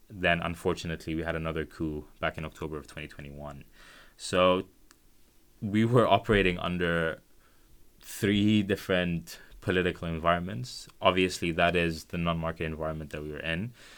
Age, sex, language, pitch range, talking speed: 20-39, male, English, 80-95 Hz, 130 wpm